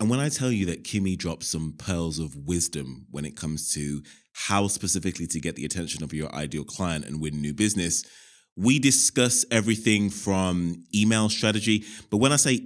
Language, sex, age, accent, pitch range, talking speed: English, male, 20-39, British, 85-110 Hz, 190 wpm